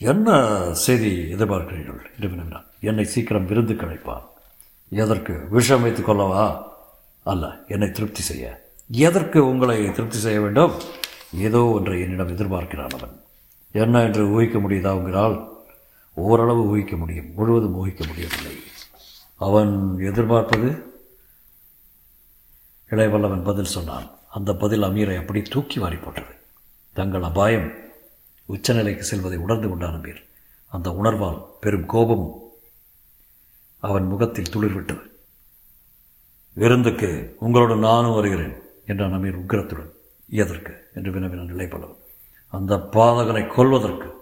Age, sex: 60-79, male